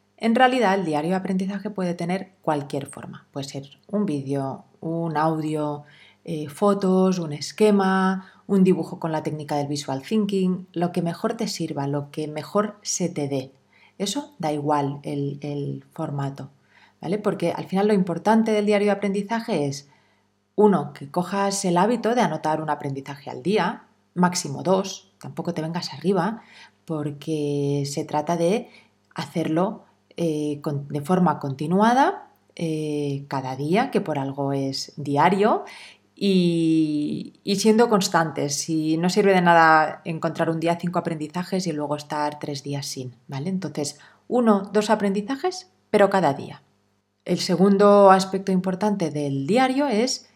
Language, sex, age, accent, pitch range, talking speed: Spanish, female, 30-49, Spanish, 150-200 Hz, 145 wpm